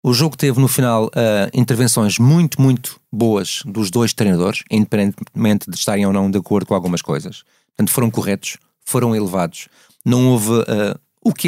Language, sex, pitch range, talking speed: Portuguese, male, 115-170 Hz, 170 wpm